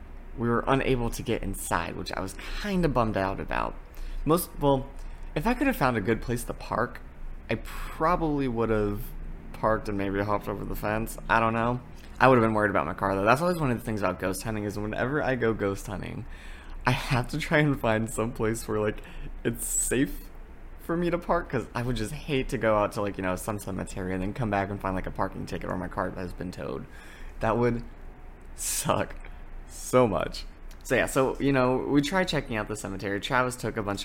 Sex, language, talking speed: male, English, 230 wpm